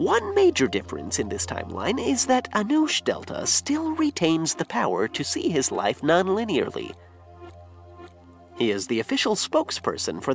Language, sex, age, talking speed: English, male, 30-49, 145 wpm